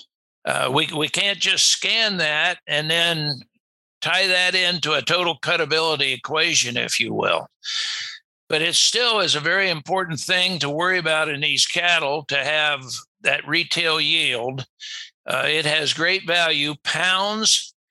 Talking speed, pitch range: 145 wpm, 150-180 Hz